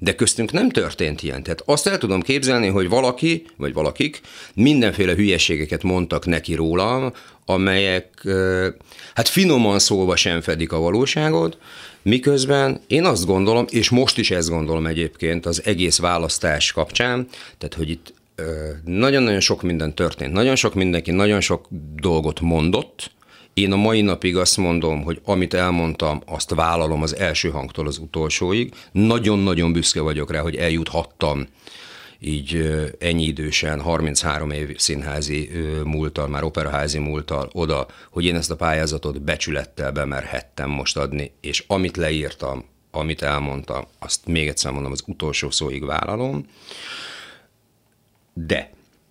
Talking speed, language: 135 wpm, Hungarian